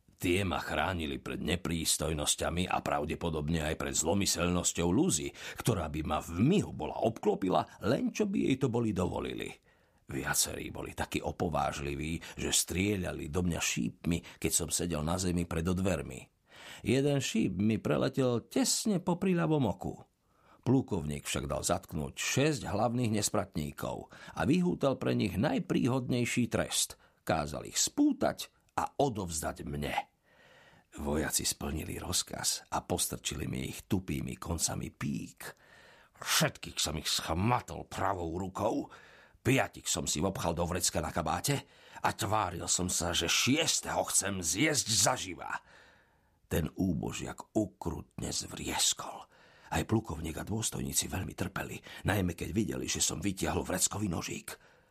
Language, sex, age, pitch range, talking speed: Slovak, male, 50-69, 80-110 Hz, 130 wpm